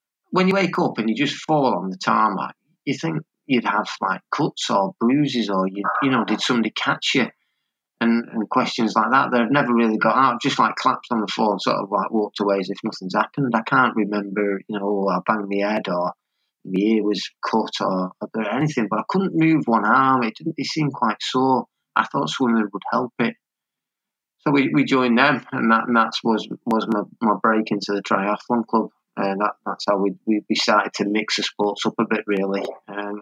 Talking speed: 220 wpm